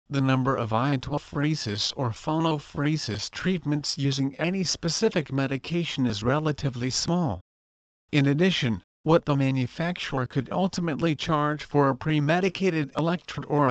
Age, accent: 50-69, American